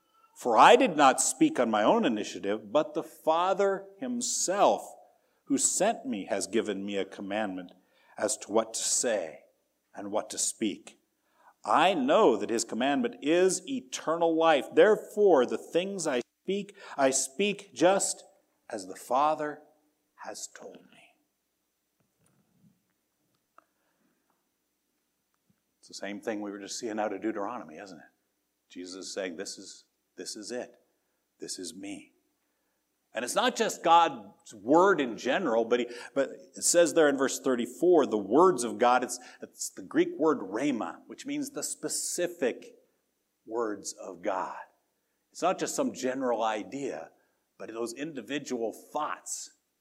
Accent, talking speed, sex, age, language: American, 145 wpm, male, 50-69, English